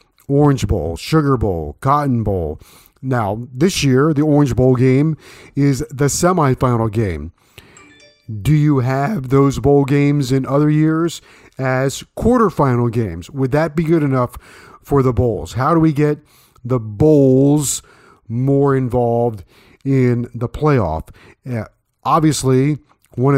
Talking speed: 130 wpm